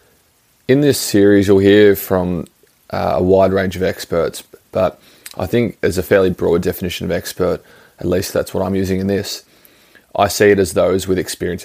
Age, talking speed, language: 20-39, 190 wpm, English